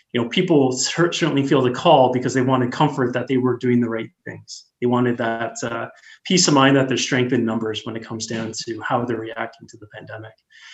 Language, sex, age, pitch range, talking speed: English, male, 20-39, 115-135 Hz, 230 wpm